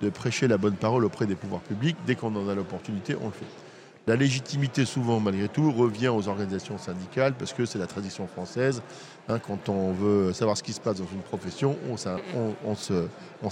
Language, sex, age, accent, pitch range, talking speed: French, male, 50-69, French, 105-130 Hz, 195 wpm